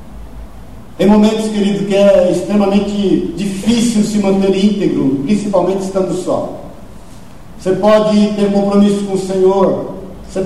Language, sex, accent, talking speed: Portuguese, male, Brazilian, 120 wpm